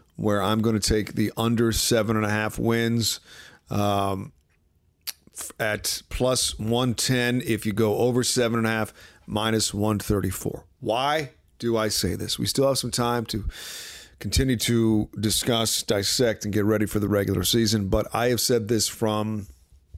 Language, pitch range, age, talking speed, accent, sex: English, 90-120 Hz, 40-59, 145 wpm, American, male